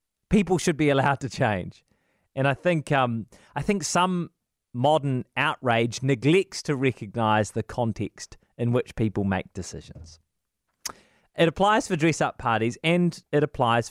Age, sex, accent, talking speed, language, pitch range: 30-49, male, Australian, 140 wpm, English, 125-180 Hz